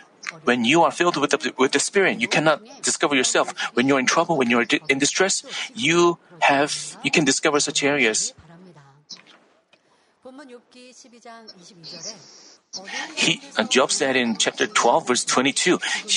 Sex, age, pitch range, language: male, 40-59, 140-230 Hz, Korean